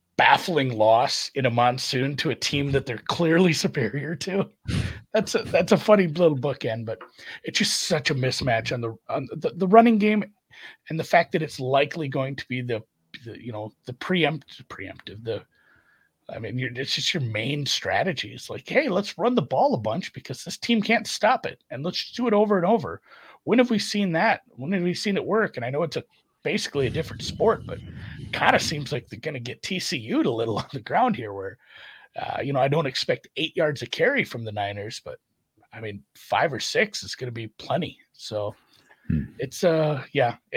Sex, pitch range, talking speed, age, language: male, 130-195 Hz, 215 wpm, 40-59, English